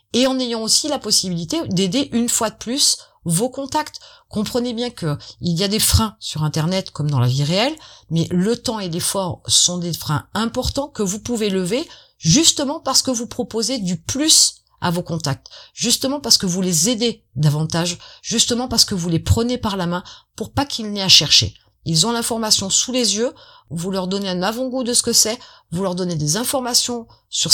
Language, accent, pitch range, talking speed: French, French, 175-240 Hz, 205 wpm